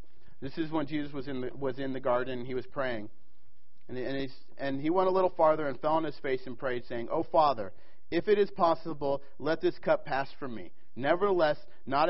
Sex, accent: male, American